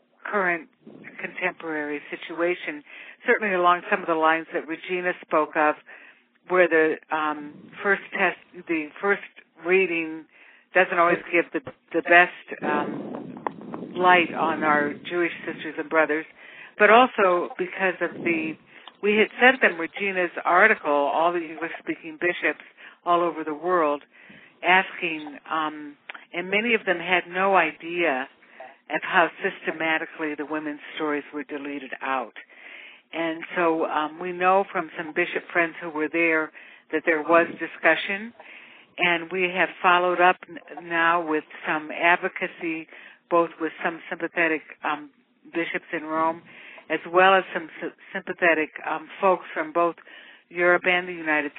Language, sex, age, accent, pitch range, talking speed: English, female, 60-79, American, 160-180 Hz, 140 wpm